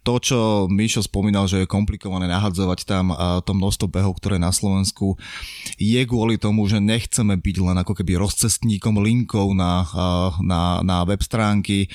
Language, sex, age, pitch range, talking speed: Slovak, male, 20-39, 90-105 Hz, 160 wpm